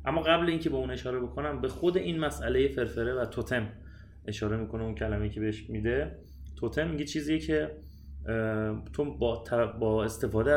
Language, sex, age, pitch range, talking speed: Persian, male, 30-49, 90-125 Hz, 160 wpm